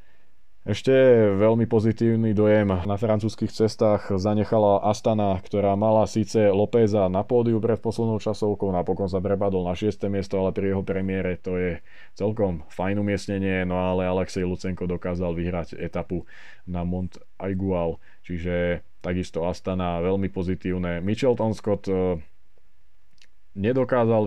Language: Slovak